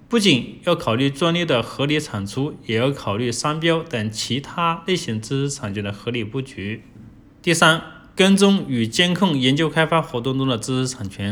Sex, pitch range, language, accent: male, 120-160 Hz, Chinese, native